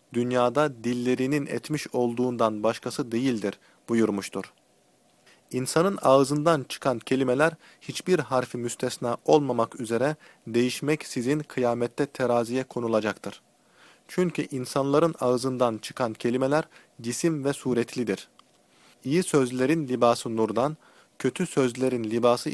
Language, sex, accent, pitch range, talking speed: Turkish, male, native, 120-145 Hz, 95 wpm